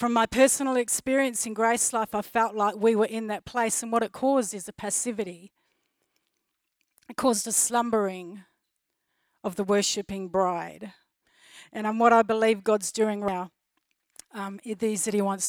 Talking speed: 165 wpm